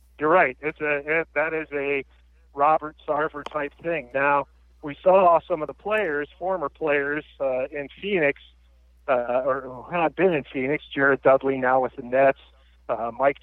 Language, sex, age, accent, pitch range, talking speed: English, male, 40-59, American, 120-145 Hz, 165 wpm